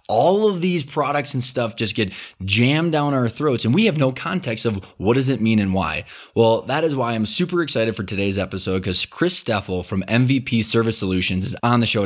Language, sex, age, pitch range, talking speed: English, male, 20-39, 105-135 Hz, 225 wpm